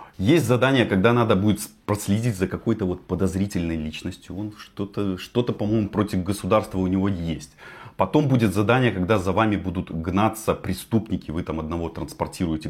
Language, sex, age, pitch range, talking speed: Russian, male, 30-49, 95-120 Hz, 155 wpm